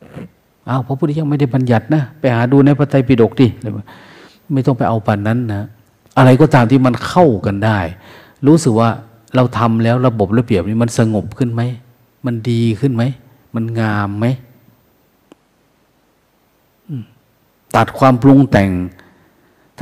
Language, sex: Thai, male